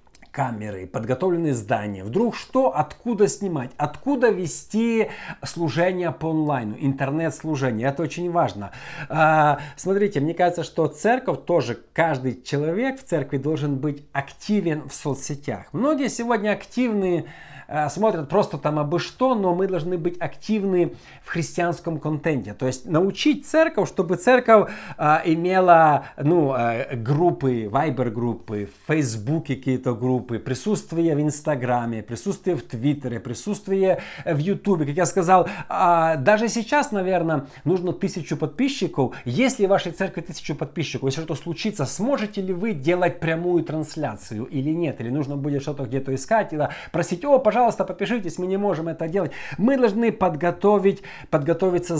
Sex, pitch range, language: male, 140-190 Hz, Russian